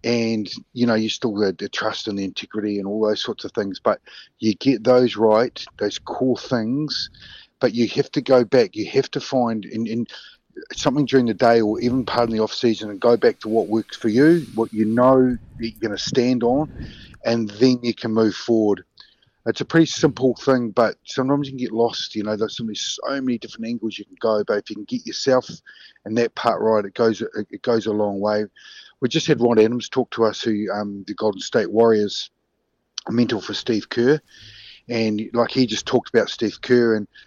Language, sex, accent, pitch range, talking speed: English, male, Australian, 110-125 Hz, 215 wpm